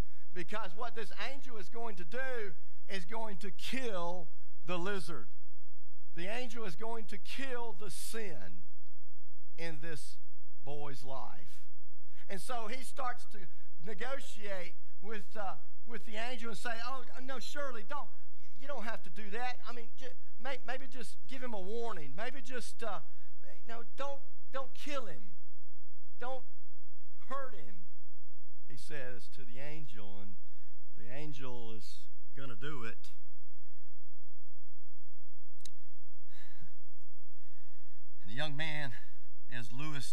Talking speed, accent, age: 130 wpm, American, 50-69